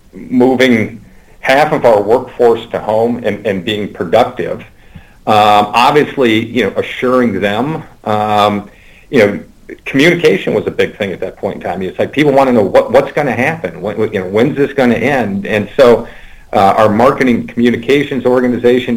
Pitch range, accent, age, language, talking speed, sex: 105-125 Hz, American, 50-69, English, 175 wpm, male